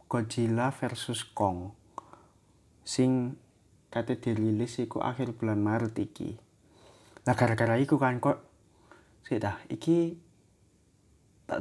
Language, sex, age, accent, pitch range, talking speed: Indonesian, male, 20-39, native, 110-140 Hz, 100 wpm